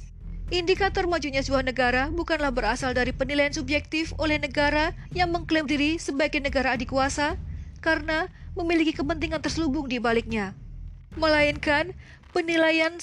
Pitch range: 275-320 Hz